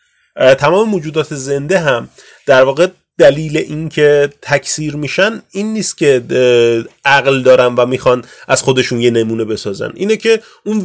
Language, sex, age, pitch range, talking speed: Persian, male, 30-49, 130-180 Hz, 145 wpm